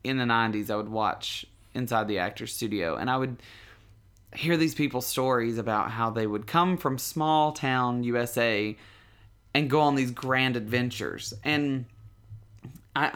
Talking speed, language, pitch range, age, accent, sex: 155 wpm, English, 110-130 Hz, 30-49, American, male